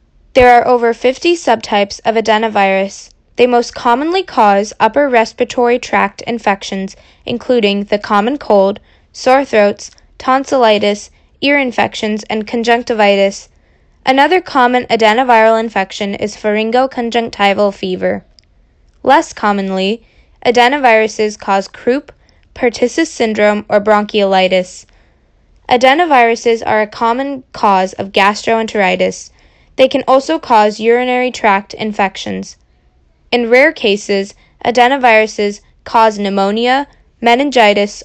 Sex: female